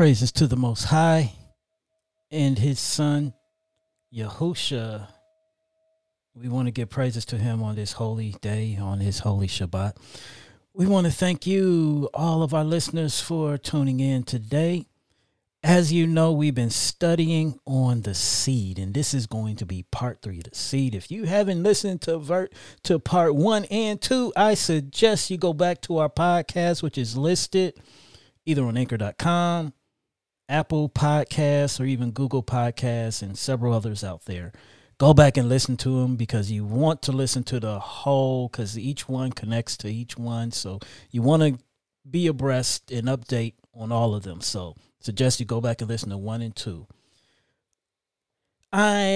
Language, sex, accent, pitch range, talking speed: English, male, American, 115-160 Hz, 165 wpm